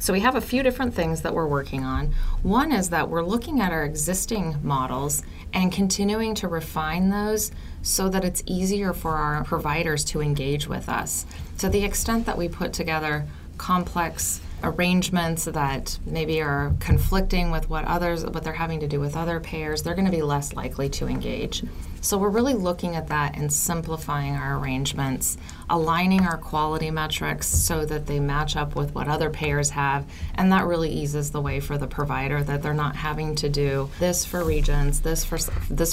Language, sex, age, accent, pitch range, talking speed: English, female, 20-39, American, 140-170 Hz, 185 wpm